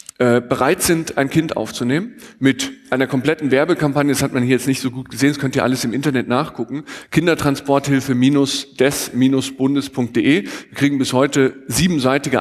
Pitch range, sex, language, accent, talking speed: 125-150 Hz, male, German, German, 150 wpm